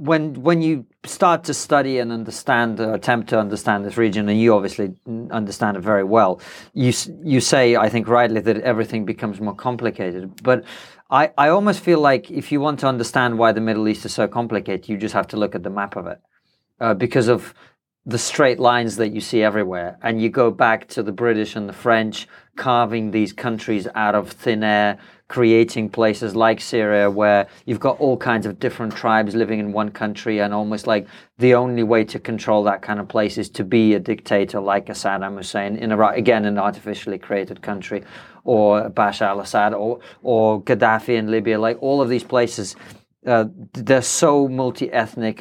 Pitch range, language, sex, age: 105-120 Hz, English, male, 40-59